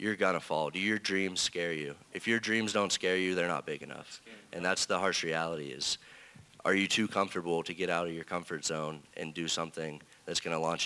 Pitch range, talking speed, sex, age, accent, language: 80-90 Hz, 240 wpm, male, 30-49, American, English